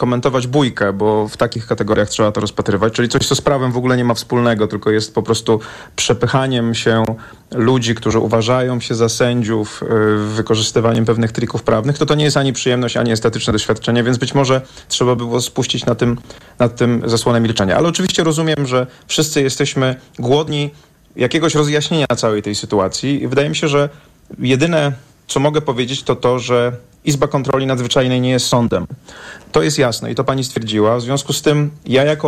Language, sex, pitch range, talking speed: Polish, male, 115-140 Hz, 180 wpm